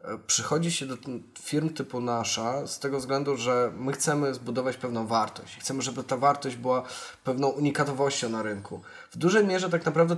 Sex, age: male, 20-39